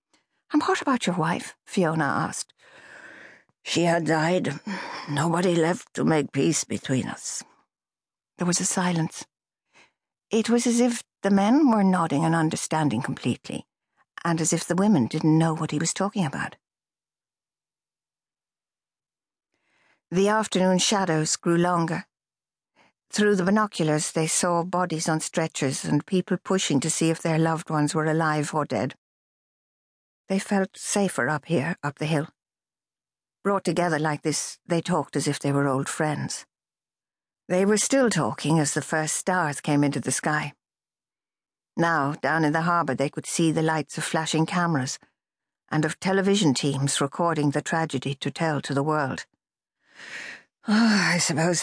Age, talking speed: 60-79, 150 wpm